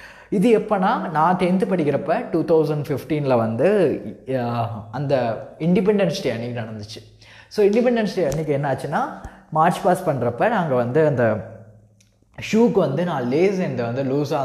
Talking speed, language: 135 wpm, Tamil